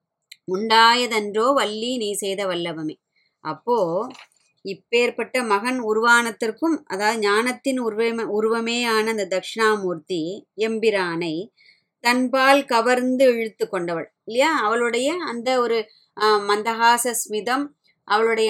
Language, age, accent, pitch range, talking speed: Tamil, 20-39, native, 195-235 Hz, 85 wpm